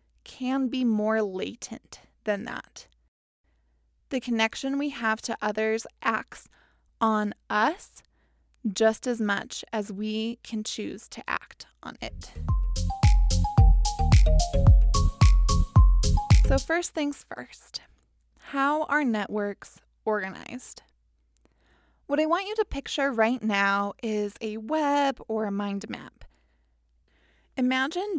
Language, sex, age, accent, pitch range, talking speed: English, female, 20-39, American, 205-265 Hz, 105 wpm